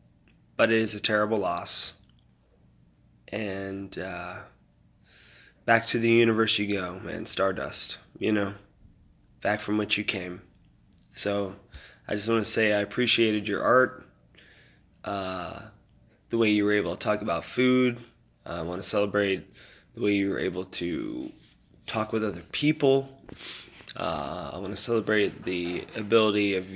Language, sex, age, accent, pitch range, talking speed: English, male, 20-39, American, 90-115 Hz, 145 wpm